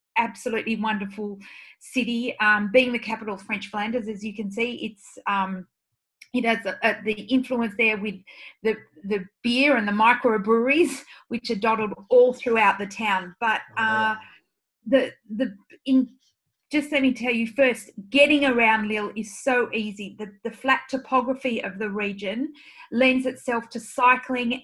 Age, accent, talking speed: 40-59, Australian, 160 wpm